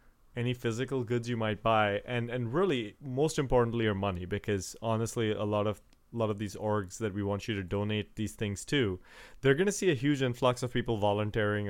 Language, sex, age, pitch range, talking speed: English, male, 30-49, 105-130 Hz, 215 wpm